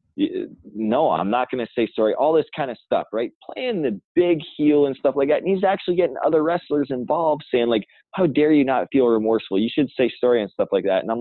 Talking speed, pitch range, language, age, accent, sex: 240 wpm, 110-180 Hz, English, 20-39, American, male